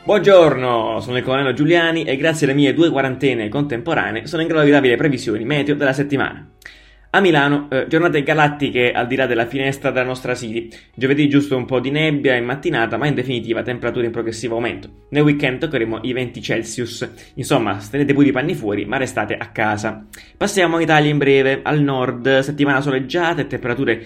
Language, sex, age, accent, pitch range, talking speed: Italian, male, 20-39, native, 120-145 Hz, 190 wpm